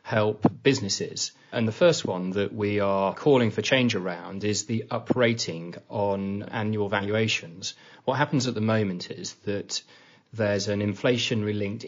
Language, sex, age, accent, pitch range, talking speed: English, male, 30-49, British, 100-120 Hz, 150 wpm